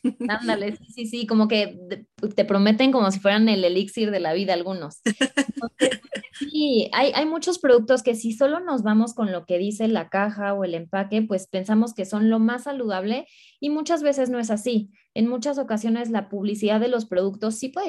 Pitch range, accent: 195-245 Hz, Mexican